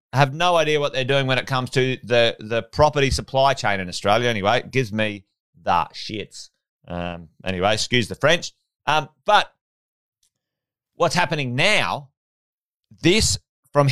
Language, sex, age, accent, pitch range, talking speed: English, male, 30-49, Australian, 110-140 Hz, 150 wpm